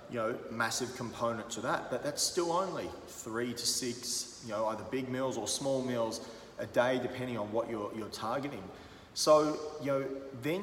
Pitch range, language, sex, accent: 115-130 Hz, English, male, Australian